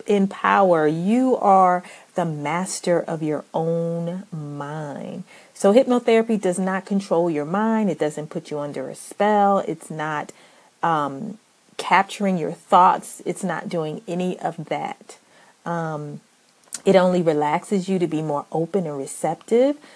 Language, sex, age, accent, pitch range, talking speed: English, female, 40-59, American, 160-205 Hz, 140 wpm